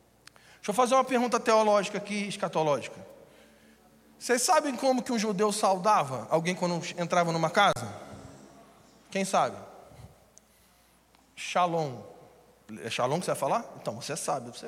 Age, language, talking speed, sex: 20-39, Portuguese, 135 wpm, male